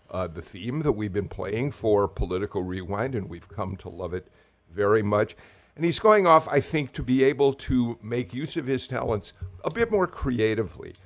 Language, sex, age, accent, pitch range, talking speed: English, male, 50-69, American, 95-125 Hz, 200 wpm